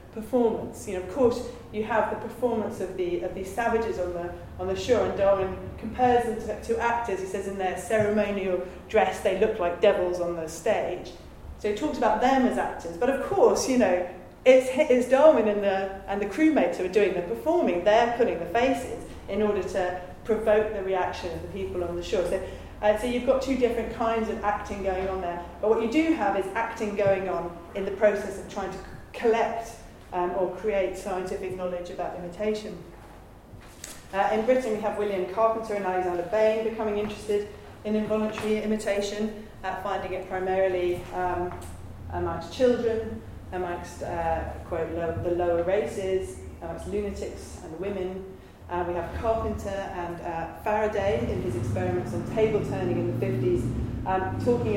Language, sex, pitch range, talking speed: English, female, 175-220 Hz, 185 wpm